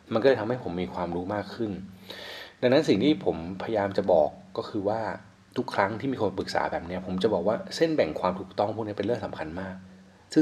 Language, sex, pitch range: Thai, male, 95-110 Hz